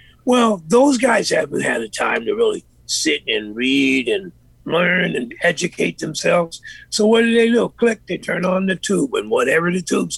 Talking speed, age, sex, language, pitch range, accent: 190 wpm, 50-69, male, English, 155-235 Hz, American